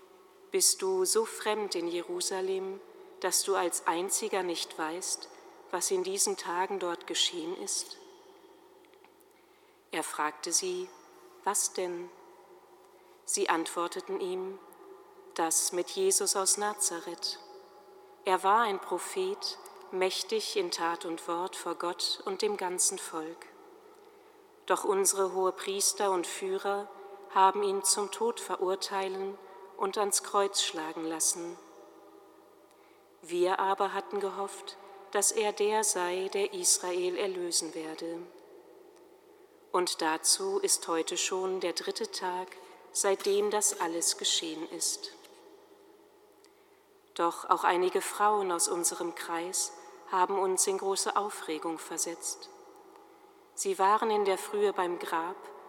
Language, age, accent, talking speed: German, 40-59, German, 115 wpm